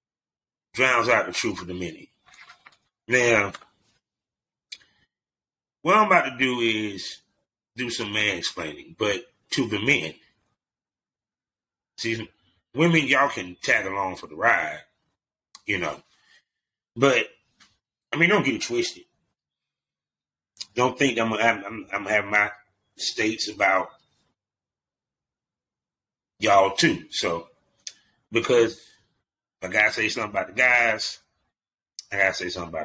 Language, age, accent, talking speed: English, 30-49, American, 120 wpm